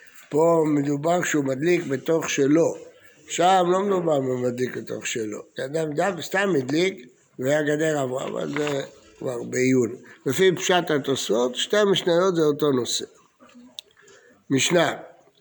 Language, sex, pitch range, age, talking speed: Hebrew, male, 140-200 Hz, 60-79, 125 wpm